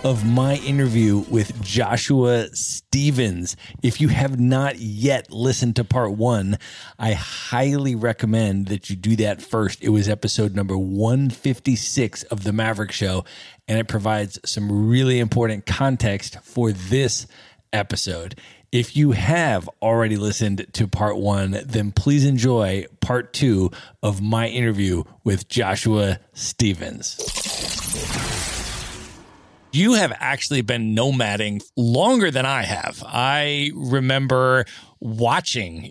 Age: 30-49